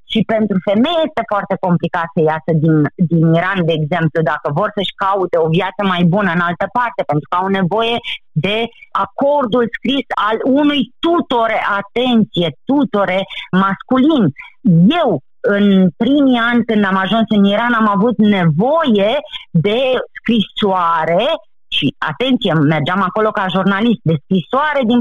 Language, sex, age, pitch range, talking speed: Romanian, female, 30-49, 190-265 Hz, 140 wpm